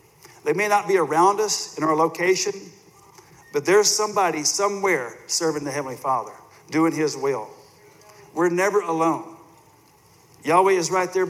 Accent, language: American, English